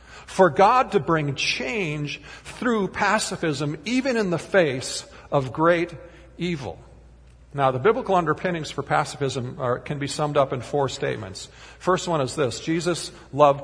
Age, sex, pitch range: 50-69, male, 145-205 Hz